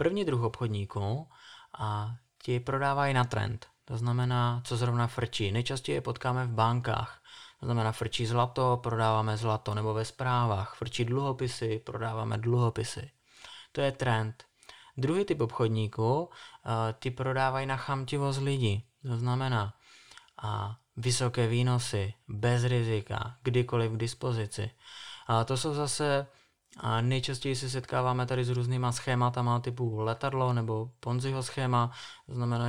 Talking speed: 130 wpm